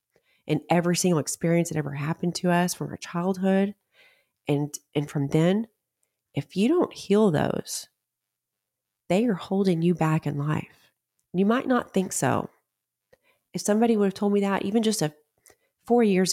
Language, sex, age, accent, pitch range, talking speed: English, female, 30-49, American, 150-190 Hz, 165 wpm